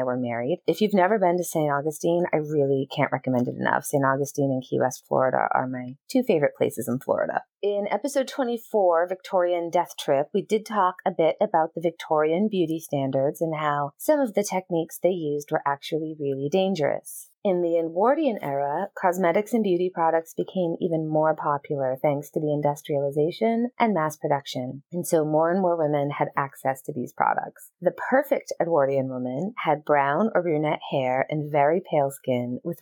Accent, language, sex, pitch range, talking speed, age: American, English, female, 140-180 Hz, 185 wpm, 30-49